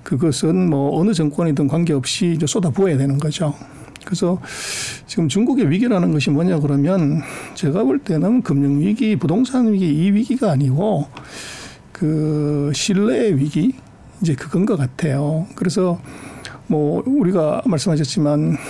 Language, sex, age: Korean, male, 60-79